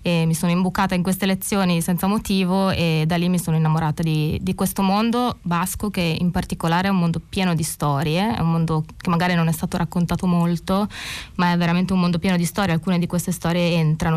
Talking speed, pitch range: 220 wpm, 170-190 Hz